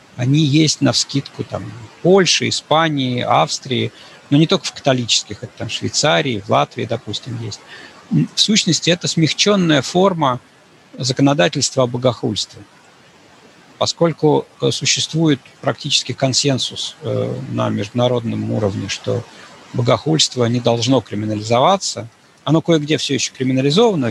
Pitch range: 120-155 Hz